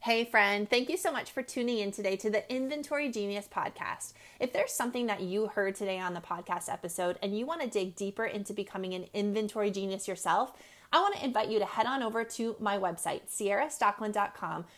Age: 30-49